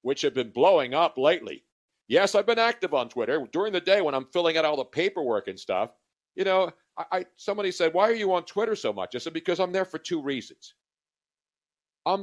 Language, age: English, 60-79